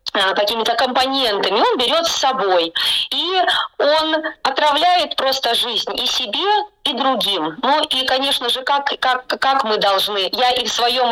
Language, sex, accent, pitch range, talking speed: Russian, female, native, 215-285 Hz, 150 wpm